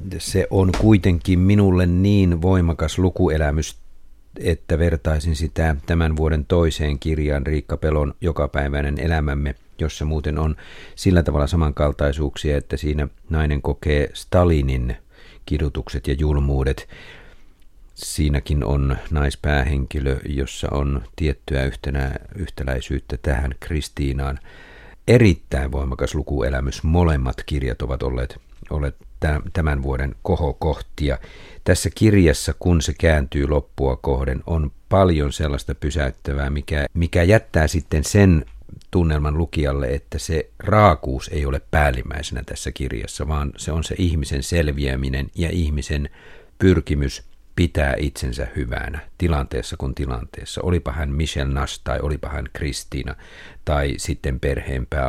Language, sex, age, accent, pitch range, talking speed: Finnish, male, 50-69, native, 70-85 Hz, 115 wpm